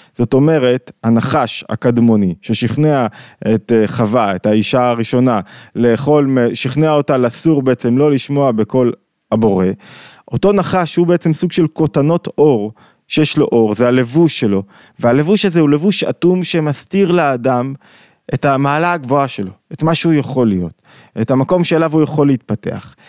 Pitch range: 125-160 Hz